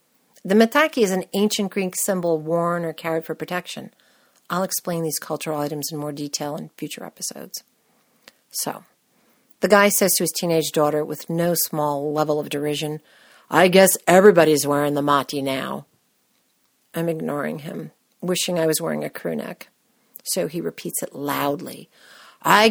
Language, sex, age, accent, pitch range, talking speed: English, female, 50-69, American, 155-200 Hz, 160 wpm